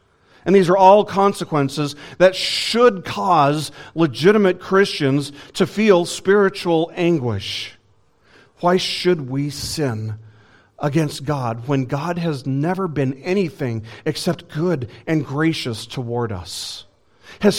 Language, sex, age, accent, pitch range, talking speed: English, male, 40-59, American, 115-170 Hz, 115 wpm